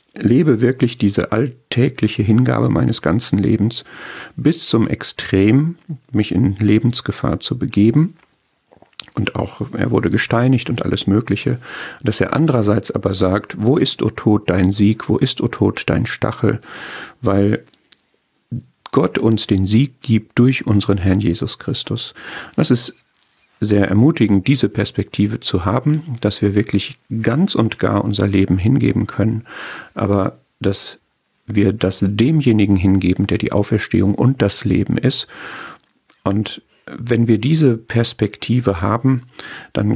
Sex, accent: male, German